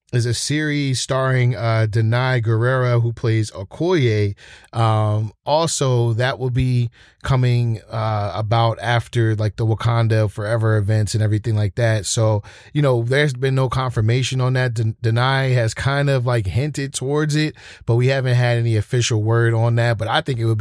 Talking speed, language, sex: 175 wpm, English, male